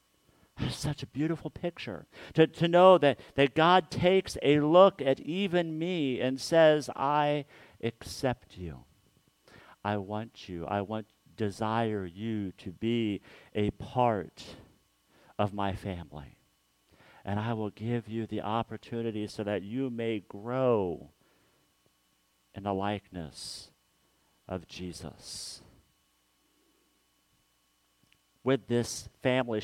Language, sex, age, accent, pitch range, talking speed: English, male, 50-69, American, 110-135 Hz, 110 wpm